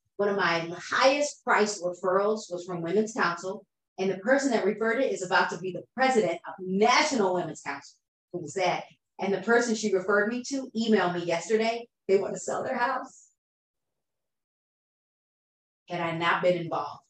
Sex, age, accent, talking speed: female, 40-59, American, 170 wpm